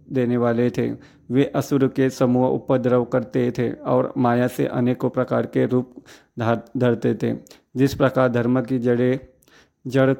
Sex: male